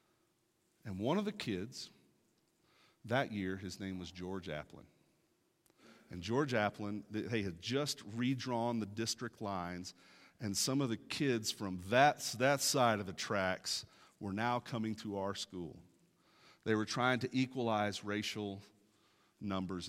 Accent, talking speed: American, 140 wpm